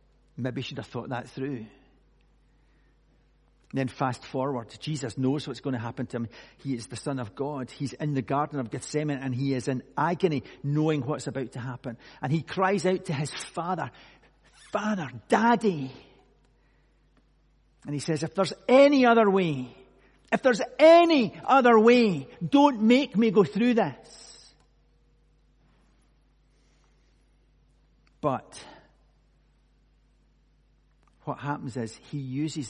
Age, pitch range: 50-69, 120-155 Hz